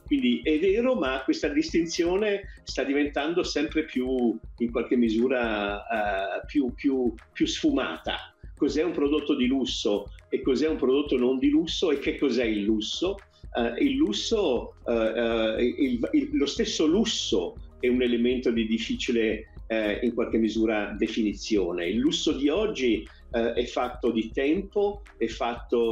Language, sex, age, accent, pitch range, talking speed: Italian, male, 50-69, native, 115-180 Hz, 130 wpm